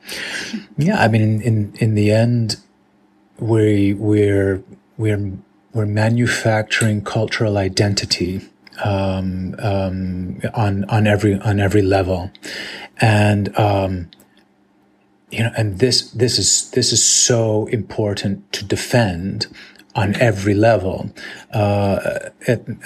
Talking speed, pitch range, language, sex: 110 wpm, 95-110 Hz, German, male